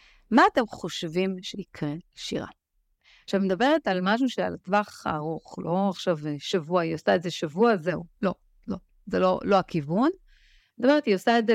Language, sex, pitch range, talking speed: Hebrew, female, 165-235 Hz, 170 wpm